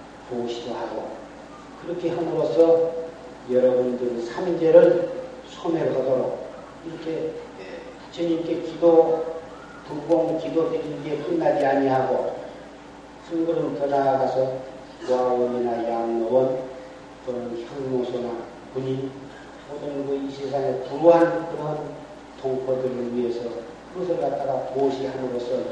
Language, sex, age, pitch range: Korean, male, 40-59, 125-170 Hz